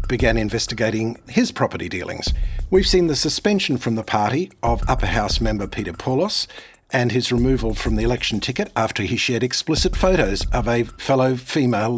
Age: 50-69